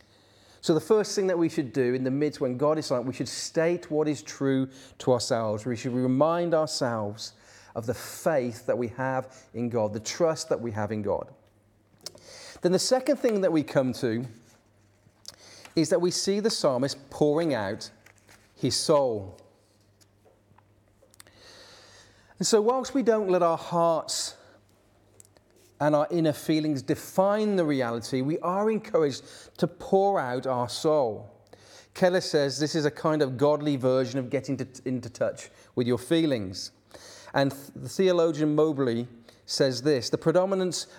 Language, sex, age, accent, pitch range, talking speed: English, male, 40-59, British, 115-160 Hz, 160 wpm